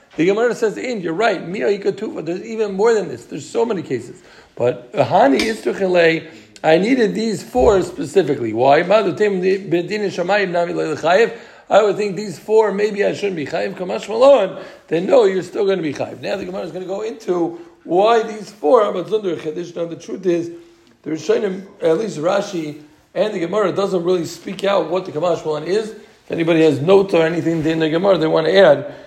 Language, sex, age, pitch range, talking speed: English, male, 50-69, 160-200 Hz, 170 wpm